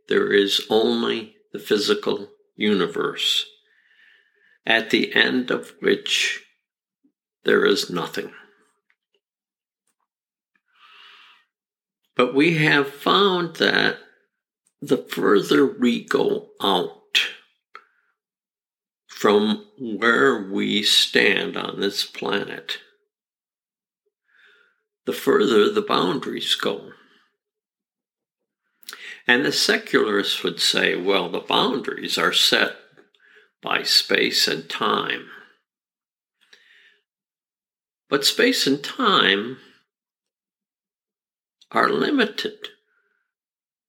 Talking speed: 75 wpm